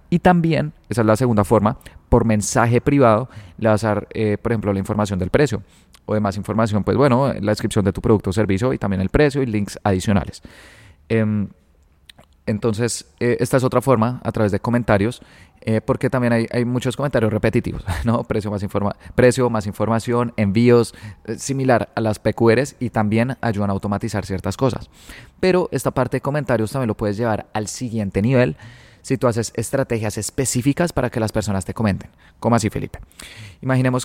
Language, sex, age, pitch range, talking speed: Spanish, male, 20-39, 105-120 Hz, 185 wpm